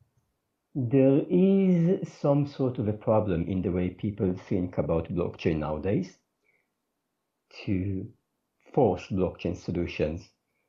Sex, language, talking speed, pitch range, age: male, English, 105 wpm, 100-125 Hz, 50-69